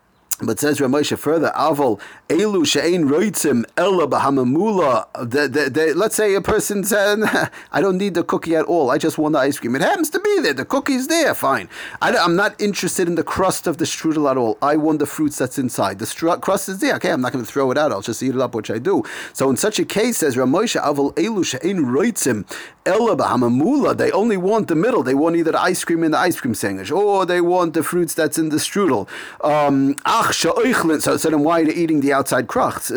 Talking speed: 230 wpm